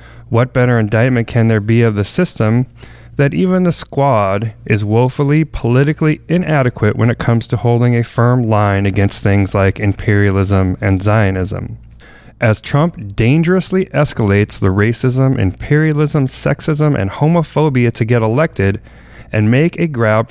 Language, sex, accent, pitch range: English, male, American, 105-135 Hz